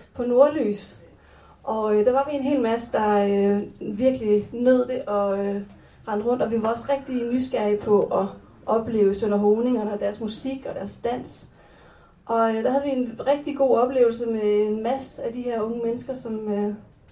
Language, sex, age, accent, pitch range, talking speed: English, female, 30-49, Danish, 225-270 Hz, 190 wpm